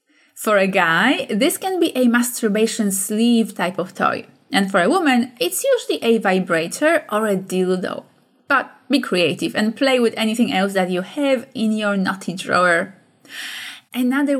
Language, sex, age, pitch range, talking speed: English, female, 20-39, 200-265 Hz, 165 wpm